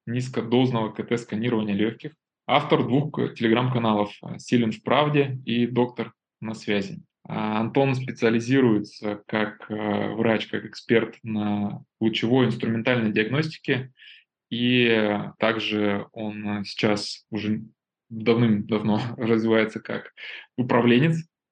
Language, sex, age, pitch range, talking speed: Russian, male, 20-39, 110-125 Hz, 90 wpm